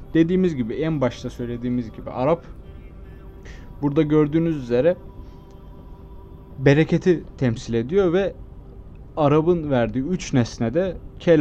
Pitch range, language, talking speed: 90-140 Hz, Turkish, 100 wpm